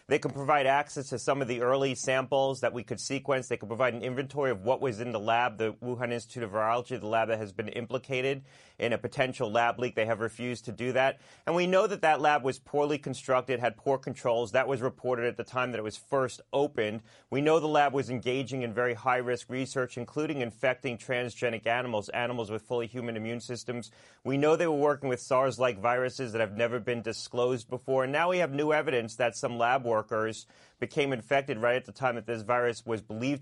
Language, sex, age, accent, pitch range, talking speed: English, male, 30-49, American, 120-135 Hz, 230 wpm